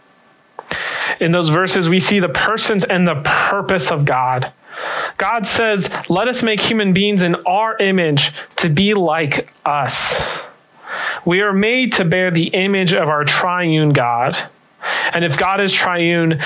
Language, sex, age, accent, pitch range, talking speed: English, male, 30-49, American, 150-185 Hz, 155 wpm